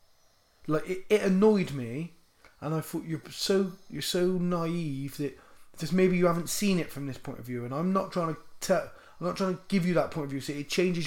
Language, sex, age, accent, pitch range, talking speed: English, male, 30-49, British, 130-165 Hz, 245 wpm